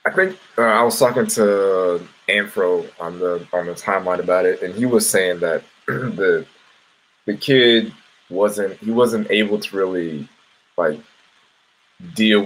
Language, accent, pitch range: English, American, 85-130 Hz